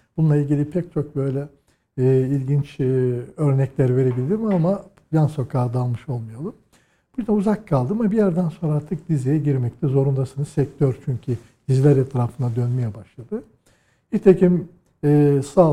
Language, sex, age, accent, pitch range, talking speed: Turkish, male, 60-79, native, 125-160 Hz, 135 wpm